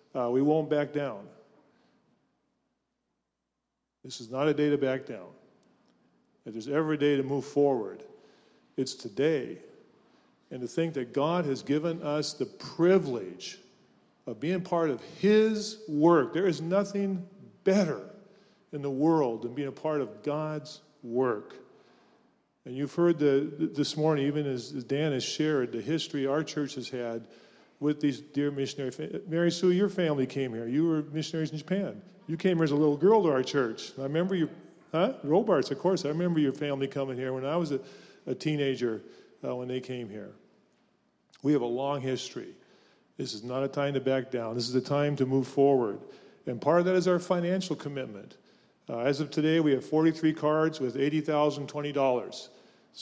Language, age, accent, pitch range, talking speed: English, 40-59, American, 135-160 Hz, 175 wpm